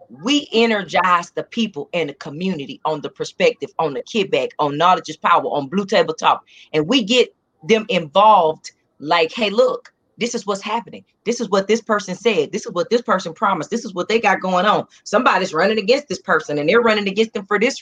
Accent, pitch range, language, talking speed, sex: American, 160-225 Hz, English, 210 wpm, female